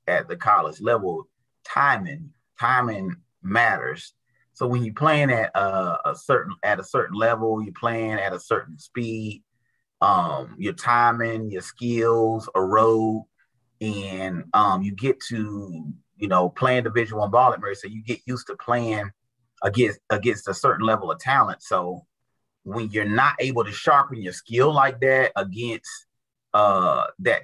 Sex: male